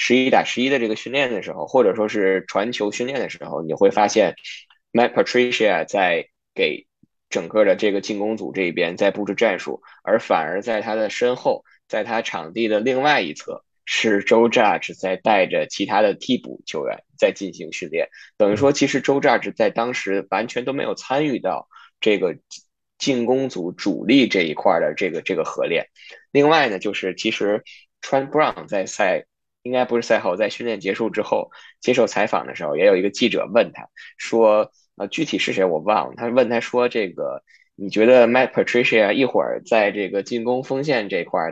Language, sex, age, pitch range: Chinese, male, 10-29, 105-130 Hz